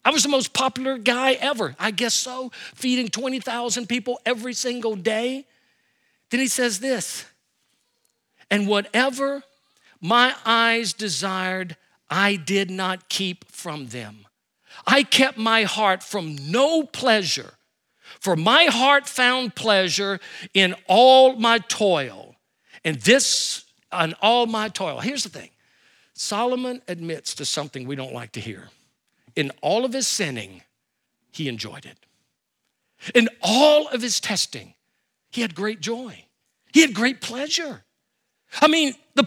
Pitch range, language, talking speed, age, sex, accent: 185-265 Hz, English, 135 wpm, 50-69, male, American